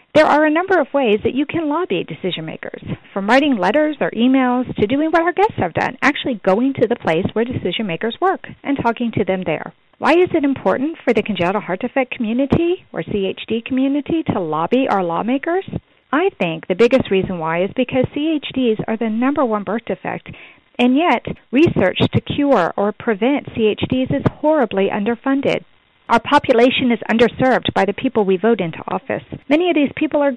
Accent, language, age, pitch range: American, English, 40-59, 205-280 Hz